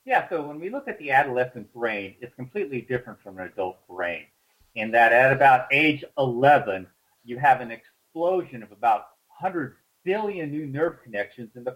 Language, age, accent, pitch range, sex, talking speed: English, 50-69, American, 110-150 Hz, male, 180 wpm